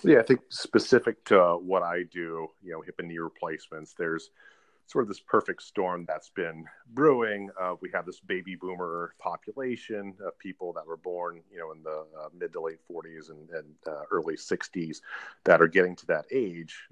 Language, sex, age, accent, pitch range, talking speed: English, male, 40-59, American, 80-95 Hz, 195 wpm